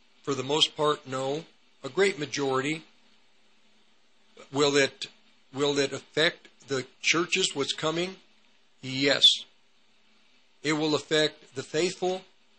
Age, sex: 50-69, male